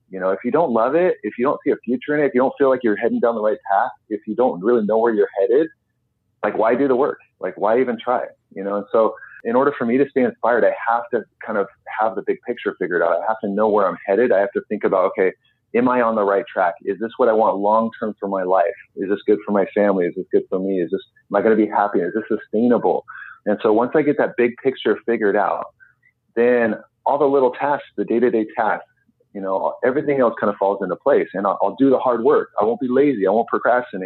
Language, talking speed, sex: English, 275 wpm, male